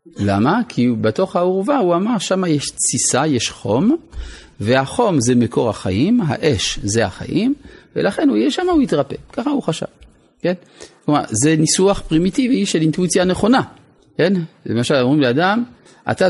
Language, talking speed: Hebrew, 145 wpm